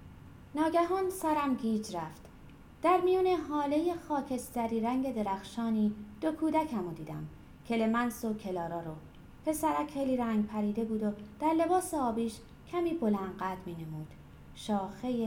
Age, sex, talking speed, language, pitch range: 30-49, female, 125 wpm, Persian, 200-285 Hz